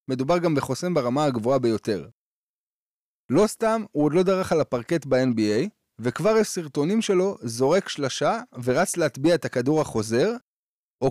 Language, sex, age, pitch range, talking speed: Hebrew, male, 20-39, 135-195 Hz, 145 wpm